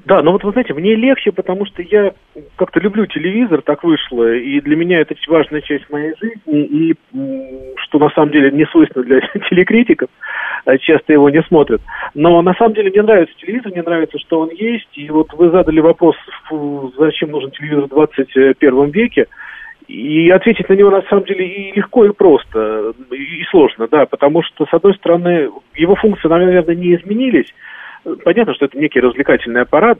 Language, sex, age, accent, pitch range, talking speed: Russian, male, 40-59, native, 145-200 Hz, 180 wpm